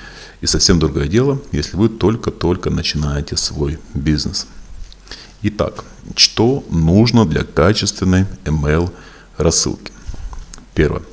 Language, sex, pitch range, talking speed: Russian, male, 75-100 Hz, 95 wpm